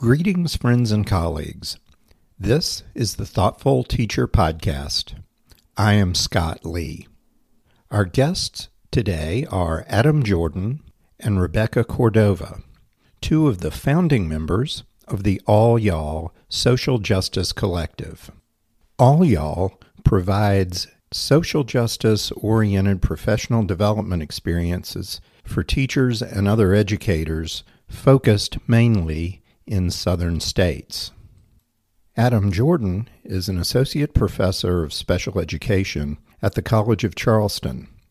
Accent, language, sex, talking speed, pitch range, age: American, English, male, 105 wpm, 90-115 Hz, 50-69